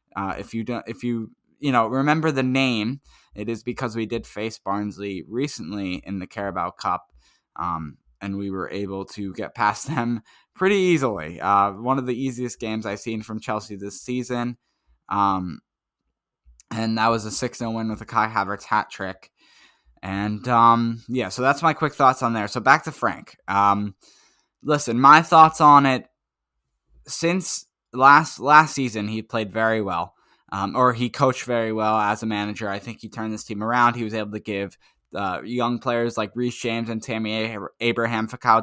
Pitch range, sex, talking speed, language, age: 100-125 Hz, male, 185 wpm, English, 10-29